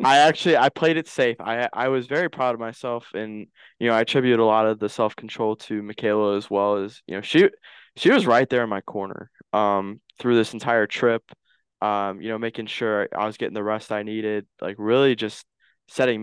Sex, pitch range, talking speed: male, 105-125 Hz, 220 wpm